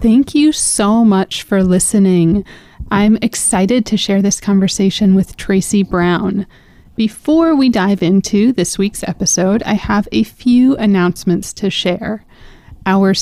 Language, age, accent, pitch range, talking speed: English, 30-49, American, 185-220 Hz, 135 wpm